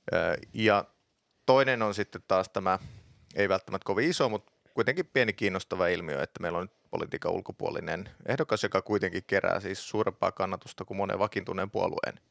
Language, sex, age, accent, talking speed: Finnish, male, 30-49, native, 155 wpm